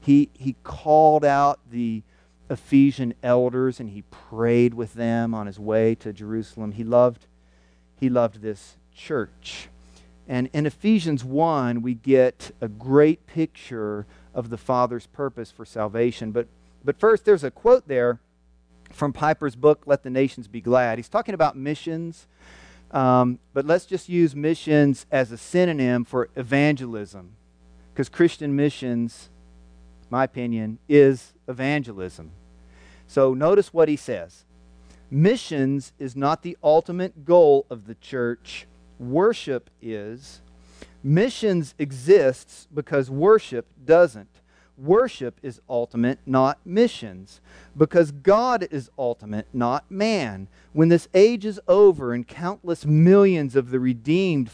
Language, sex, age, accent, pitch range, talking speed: English, male, 40-59, American, 105-150 Hz, 130 wpm